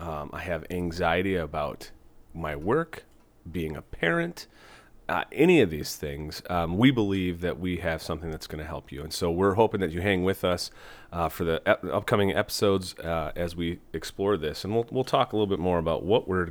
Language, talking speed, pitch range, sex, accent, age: English, 210 wpm, 85-100 Hz, male, American, 30-49